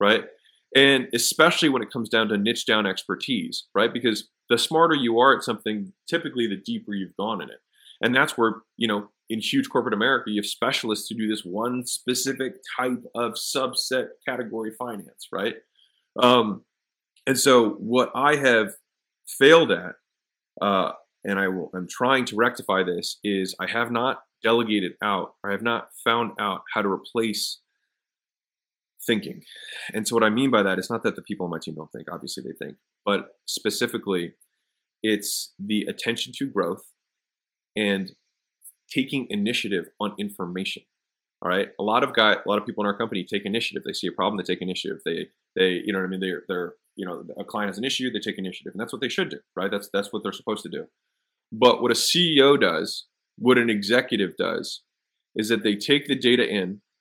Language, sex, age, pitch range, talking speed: English, male, 30-49, 100-125 Hz, 195 wpm